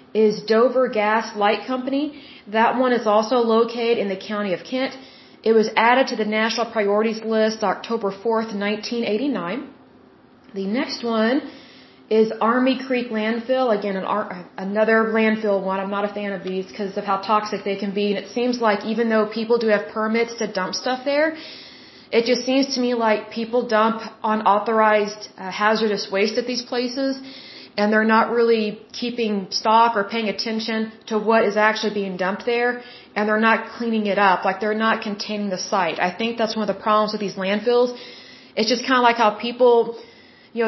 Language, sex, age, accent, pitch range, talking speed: Bengali, female, 30-49, American, 205-240 Hz, 185 wpm